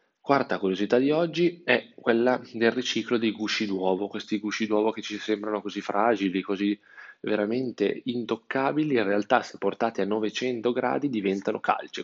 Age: 20-39